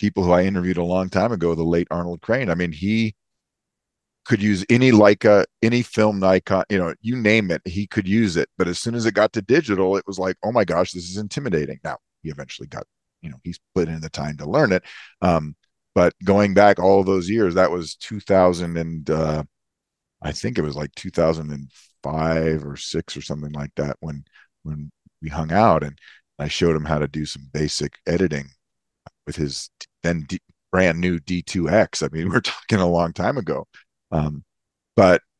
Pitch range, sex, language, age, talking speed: 80-105 Hz, male, English, 40-59, 210 wpm